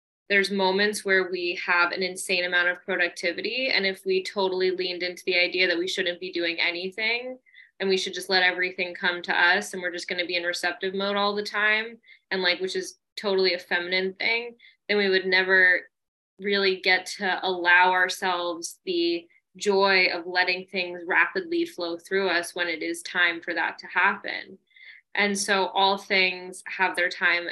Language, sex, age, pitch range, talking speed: English, female, 20-39, 180-200 Hz, 190 wpm